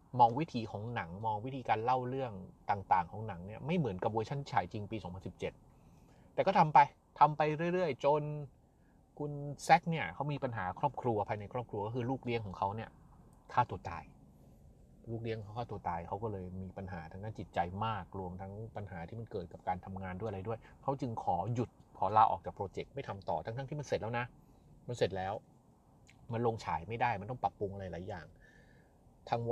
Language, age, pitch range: Thai, 30-49, 100-135 Hz